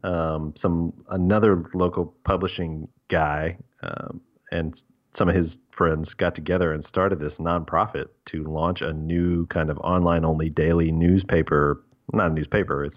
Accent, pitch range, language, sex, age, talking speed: American, 75-90 Hz, English, male, 40-59, 150 wpm